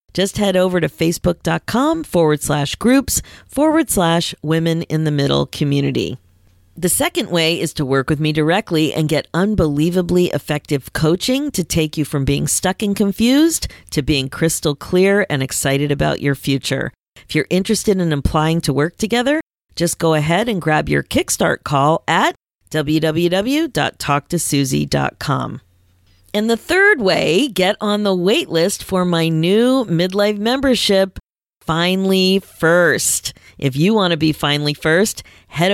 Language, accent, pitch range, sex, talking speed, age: English, American, 145-200 Hz, female, 150 wpm, 40-59